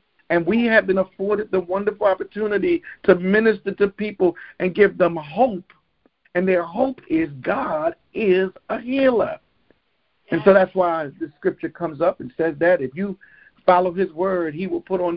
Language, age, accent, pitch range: English, 50-69, American, 140-195 Hz